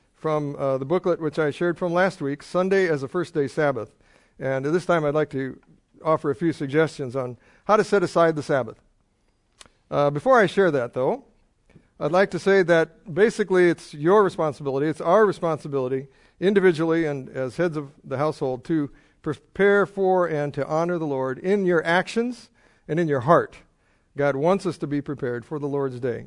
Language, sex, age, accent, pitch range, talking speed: English, male, 50-69, American, 140-185 Hz, 190 wpm